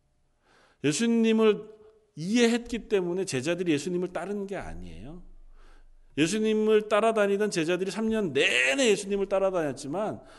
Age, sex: 40-59, male